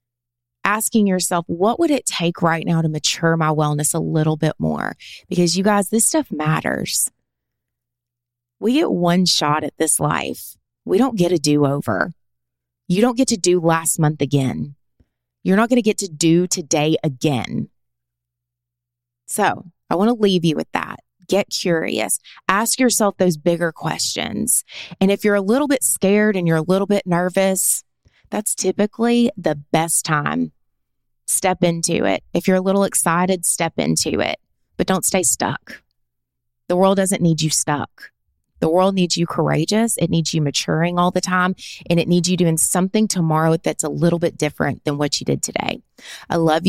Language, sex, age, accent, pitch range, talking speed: English, female, 20-39, American, 150-190 Hz, 175 wpm